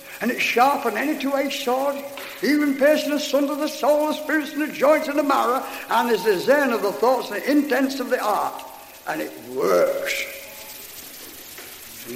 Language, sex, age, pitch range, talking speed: English, male, 60-79, 190-305 Hz, 190 wpm